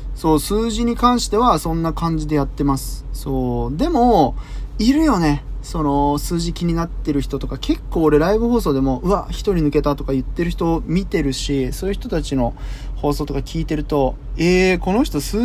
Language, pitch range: Japanese, 135-205 Hz